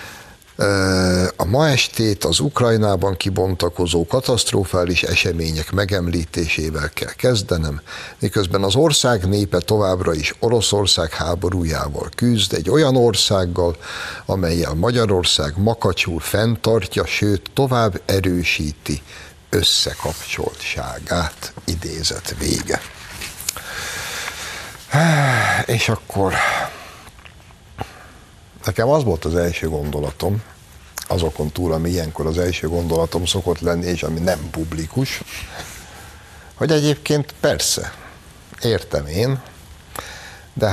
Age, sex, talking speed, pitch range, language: 60-79, male, 90 wpm, 80-110 Hz, Hungarian